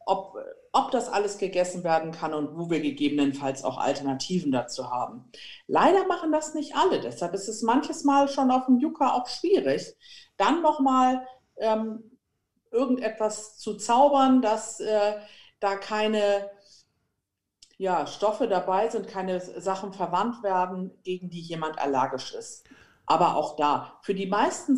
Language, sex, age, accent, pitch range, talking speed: German, female, 50-69, German, 150-230 Hz, 150 wpm